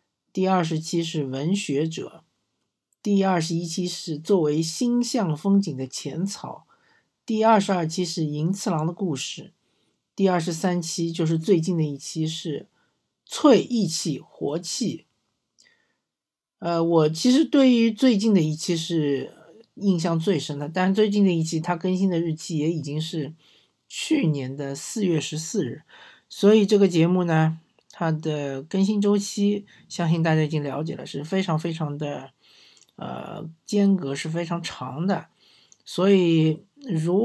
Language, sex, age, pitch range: Chinese, male, 50-69, 155-195 Hz